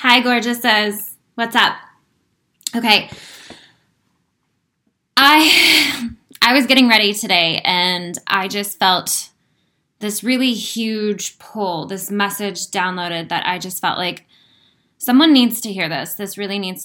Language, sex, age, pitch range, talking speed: English, female, 10-29, 195-240 Hz, 130 wpm